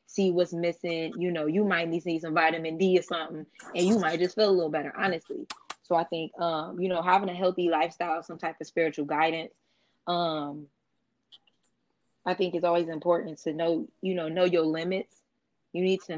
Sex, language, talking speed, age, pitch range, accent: female, English, 195 wpm, 20-39, 160-180 Hz, American